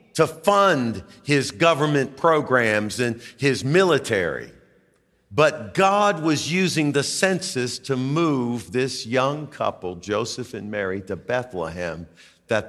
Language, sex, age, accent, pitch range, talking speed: English, male, 50-69, American, 110-165 Hz, 120 wpm